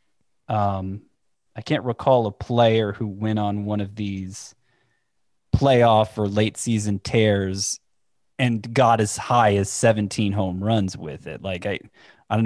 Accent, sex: American, male